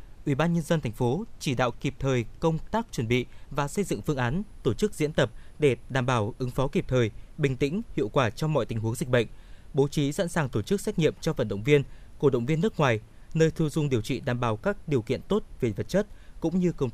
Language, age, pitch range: Vietnamese, 20-39, 120-160 Hz